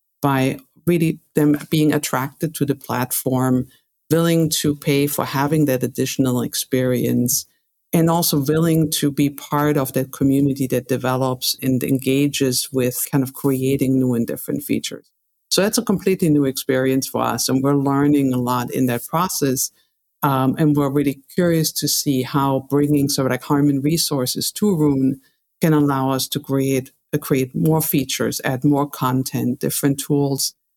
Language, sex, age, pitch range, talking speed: English, female, 50-69, 130-150 Hz, 160 wpm